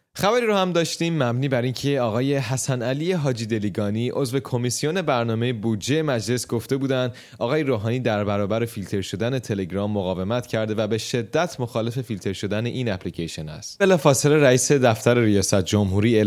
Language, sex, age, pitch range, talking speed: Persian, male, 30-49, 105-135 Hz, 155 wpm